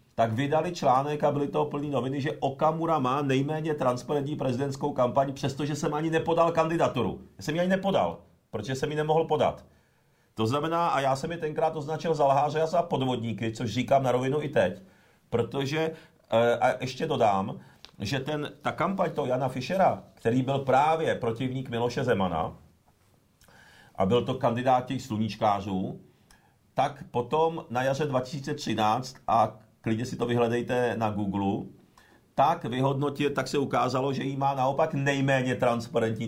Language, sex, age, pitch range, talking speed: Czech, male, 40-59, 120-150 Hz, 155 wpm